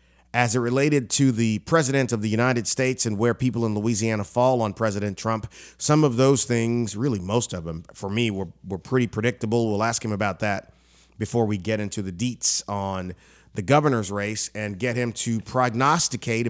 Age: 30-49